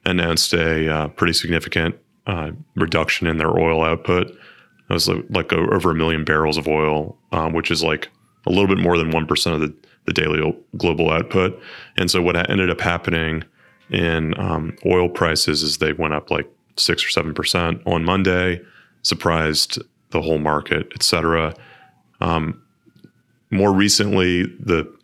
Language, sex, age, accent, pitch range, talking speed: English, male, 30-49, American, 80-90 Hz, 160 wpm